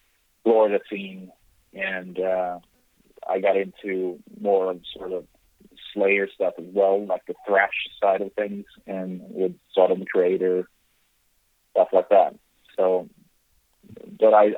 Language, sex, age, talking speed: English, male, 30-49, 130 wpm